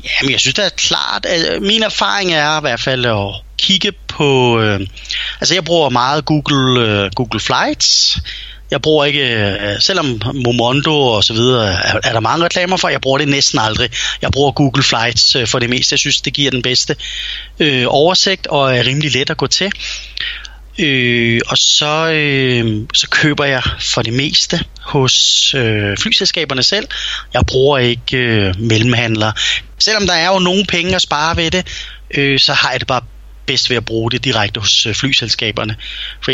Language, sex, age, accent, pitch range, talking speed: Danish, male, 30-49, native, 115-145 Hz, 175 wpm